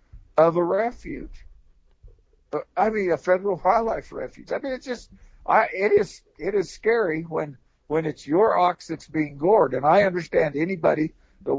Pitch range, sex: 135-175 Hz, male